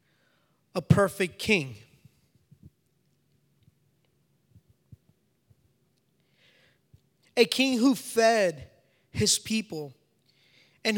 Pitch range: 165-235 Hz